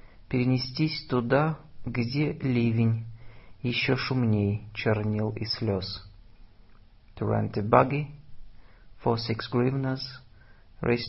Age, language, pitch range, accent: 50-69, Russian, 105-130 Hz, native